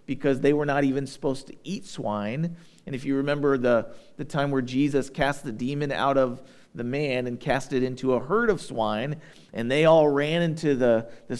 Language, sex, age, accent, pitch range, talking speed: English, male, 40-59, American, 130-160 Hz, 210 wpm